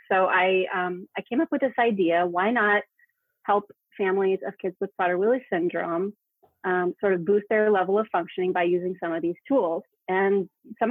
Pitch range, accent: 175-210 Hz, American